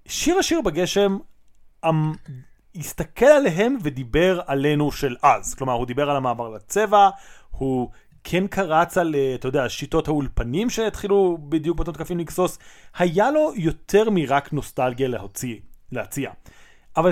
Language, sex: Hebrew, male